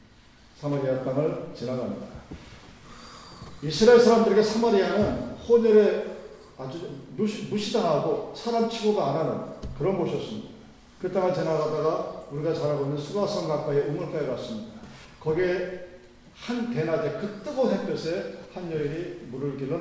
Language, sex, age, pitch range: Korean, male, 40-59, 145-190 Hz